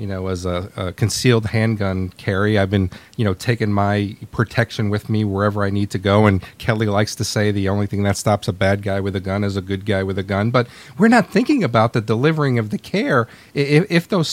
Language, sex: English, male